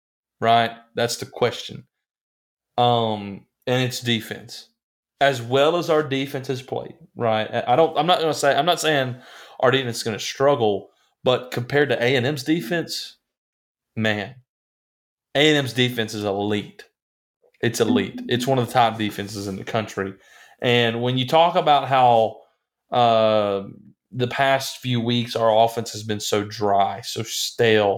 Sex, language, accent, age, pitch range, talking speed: male, English, American, 30-49, 105-125 Hz, 160 wpm